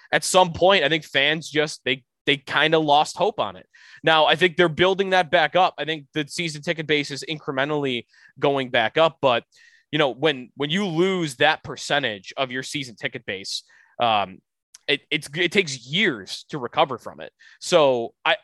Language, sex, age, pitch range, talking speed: English, male, 20-39, 135-175 Hz, 195 wpm